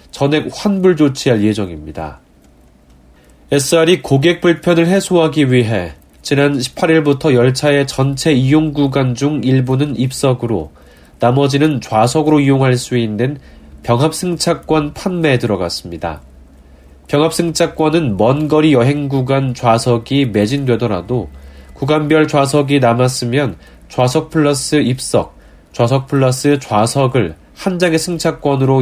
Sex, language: male, Korean